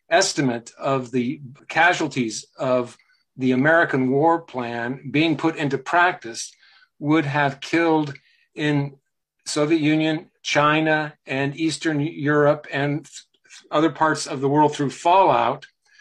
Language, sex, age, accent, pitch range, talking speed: English, male, 50-69, American, 130-150 Hz, 115 wpm